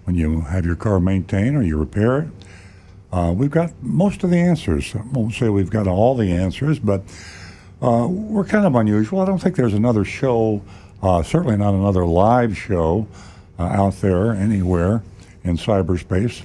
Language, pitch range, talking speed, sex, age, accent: English, 90-110 Hz, 180 wpm, male, 60-79, American